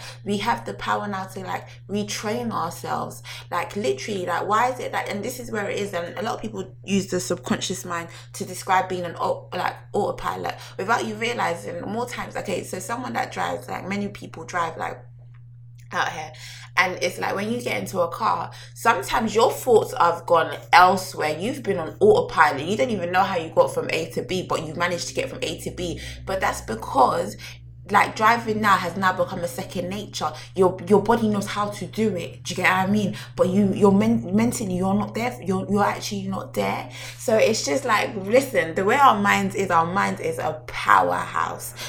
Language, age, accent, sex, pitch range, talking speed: English, 20-39, British, female, 120-200 Hz, 210 wpm